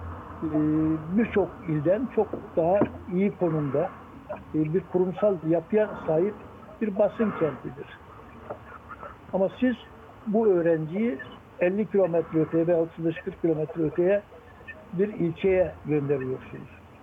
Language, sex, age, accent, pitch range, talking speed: Turkish, male, 60-79, native, 160-195 Hz, 95 wpm